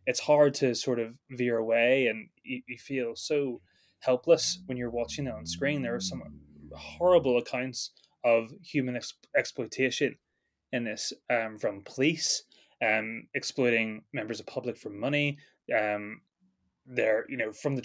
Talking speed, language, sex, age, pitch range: 155 wpm, English, male, 20-39, 120-145 Hz